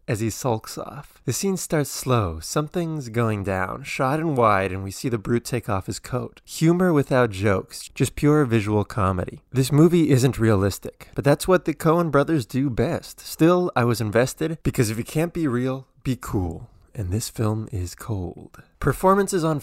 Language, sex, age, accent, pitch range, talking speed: English, male, 20-39, American, 110-150 Hz, 190 wpm